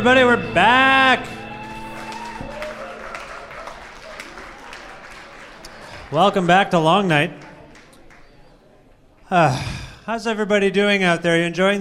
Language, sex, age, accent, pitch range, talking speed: English, male, 30-49, American, 175-240 Hz, 85 wpm